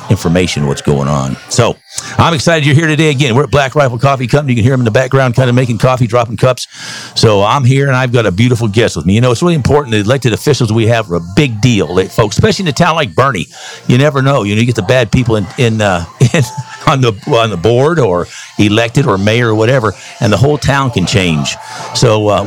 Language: English